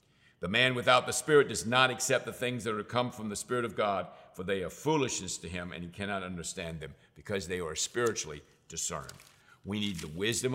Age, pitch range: 50-69, 100-140 Hz